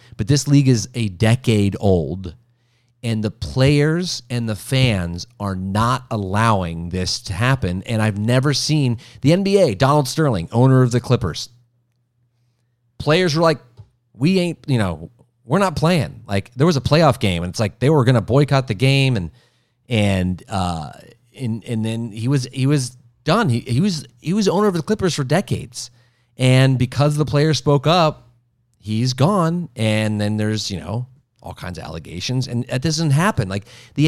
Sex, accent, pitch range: male, American, 110-140 Hz